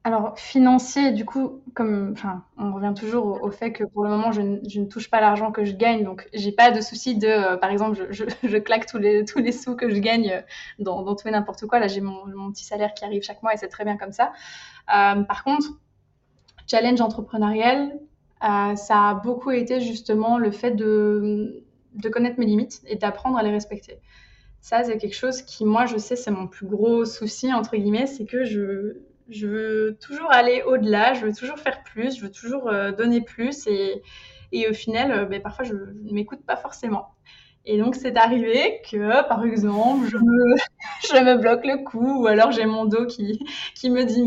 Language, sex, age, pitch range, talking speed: French, female, 20-39, 210-245 Hz, 215 wpm